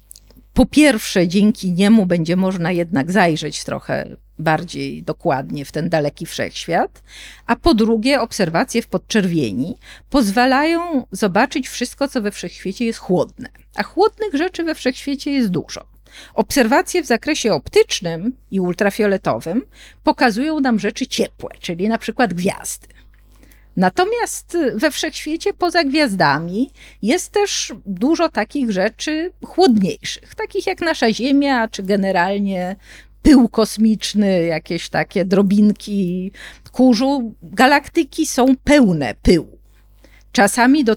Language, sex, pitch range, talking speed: Polish, female, 195-280 Hz, 115 wpm